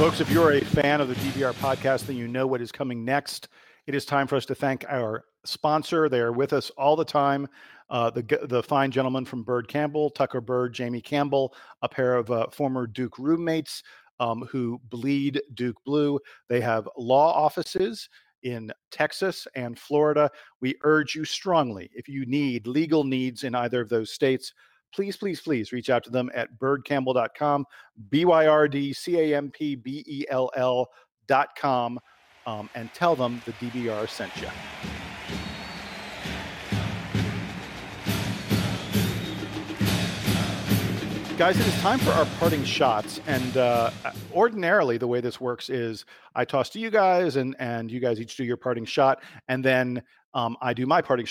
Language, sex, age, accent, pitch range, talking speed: English, male, 50-69, American, 120-145 Hz, 160 wpm